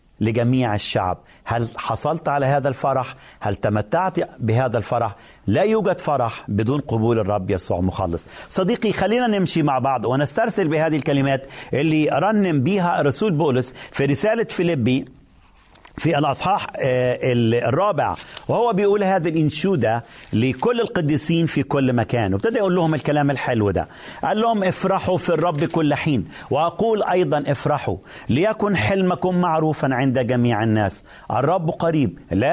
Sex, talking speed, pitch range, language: male, 135 wpm, 120-175 Hz, Arabic